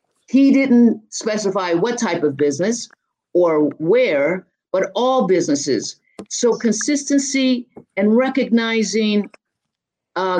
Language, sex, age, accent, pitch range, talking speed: English, female, 50-69, American, 180-230 Hz, 100 wpm